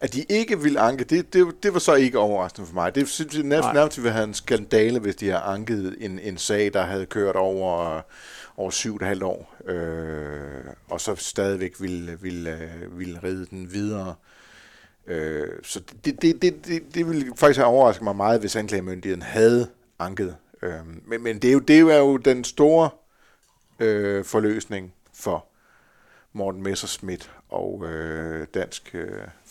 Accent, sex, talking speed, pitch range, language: native, male, 175 wpm, 90-125 Hz, Danish